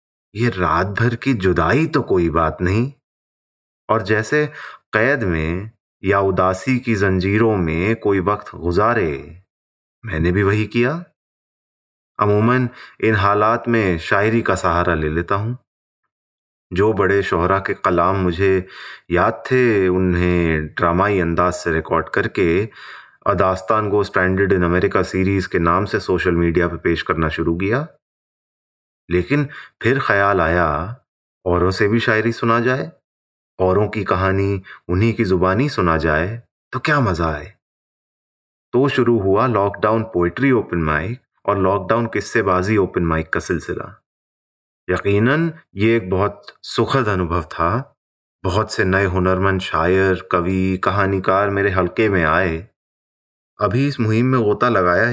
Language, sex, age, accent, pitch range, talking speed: English, male, 30-49, Indian, 90-115 Hz, 135 wpm